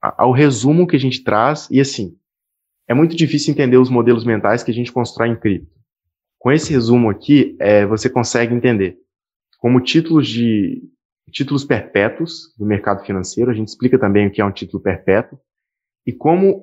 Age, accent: 20-39, Brazilian